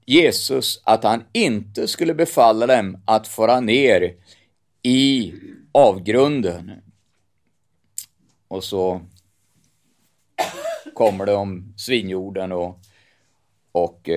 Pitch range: 95-115 Hz